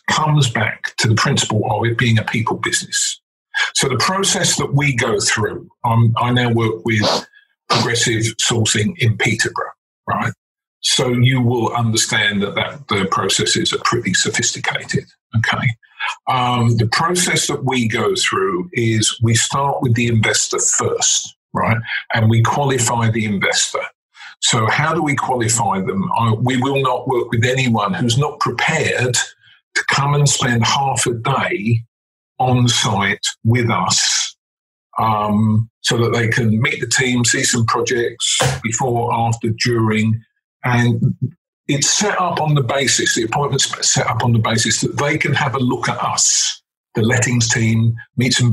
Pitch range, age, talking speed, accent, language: 115-130 Hz, 50-69, 155 wpm, British, English